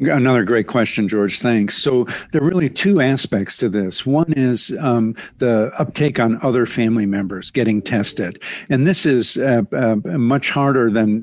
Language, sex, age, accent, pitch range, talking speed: English, male, 60-79, American, 110-130 Hz, 170 wpm